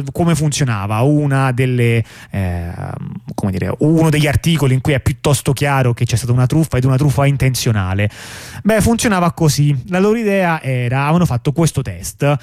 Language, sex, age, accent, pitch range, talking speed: Italian, male, 20-39, native, 125-165 Hz, 170 wpm